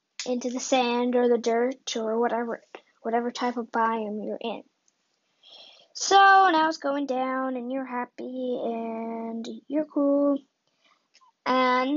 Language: English